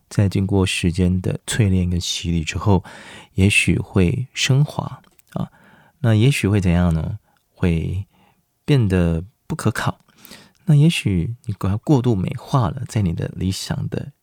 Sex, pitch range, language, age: male, 85-125 Hz, Chinese, 20-39